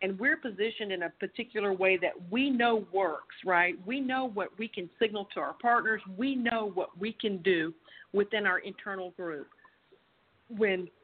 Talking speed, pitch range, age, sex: 175 wpm, 185-245 Hz, 50-69, female